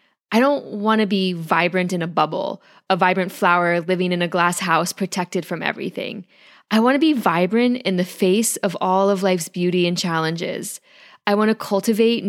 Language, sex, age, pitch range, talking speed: English, female, 20-39, 175-220 Hz, 190 wpm